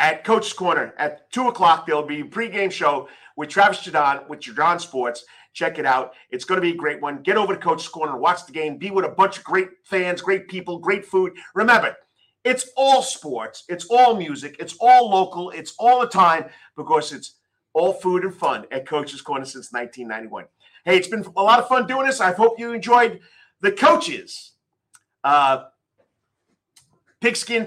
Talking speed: 190 wpm